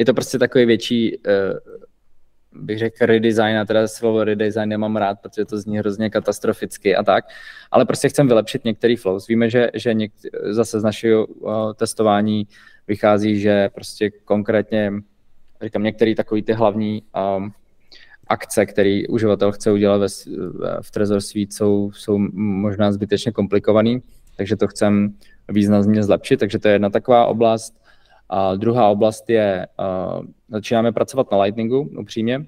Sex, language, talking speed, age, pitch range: male, Czech, 145 wpm, 20-39, 100-115 Hz